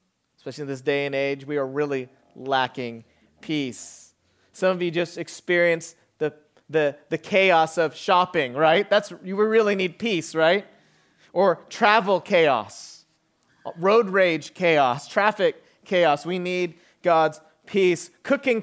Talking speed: 135 wpm